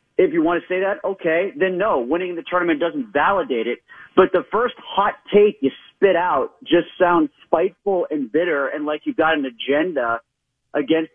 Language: English